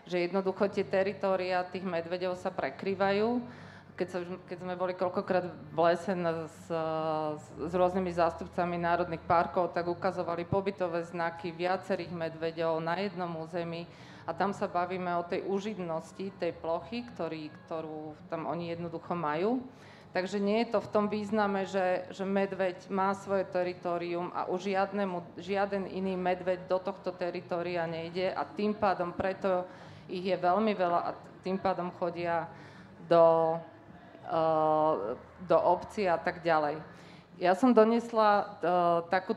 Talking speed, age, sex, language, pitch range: 140 wpm, 30-49, female, Slovak, 170-195 Hz